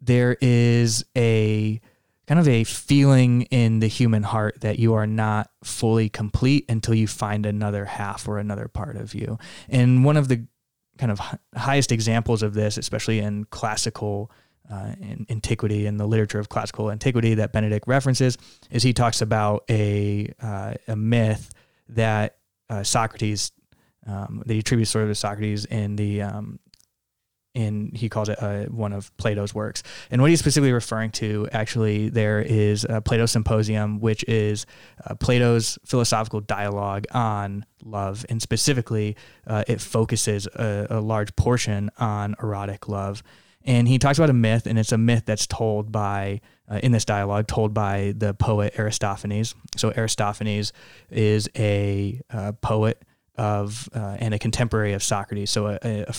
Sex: male